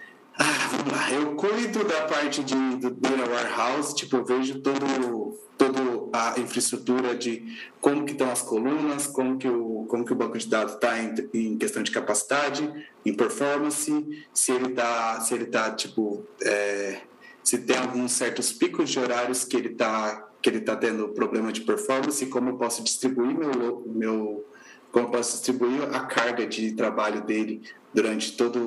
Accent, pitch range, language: Brazilian, 120-140 Hz, Portuguese